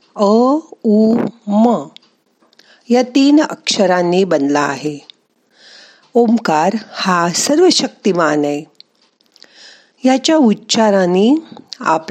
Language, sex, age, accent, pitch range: Marathi, female, 50-69, native, 165-240 Hz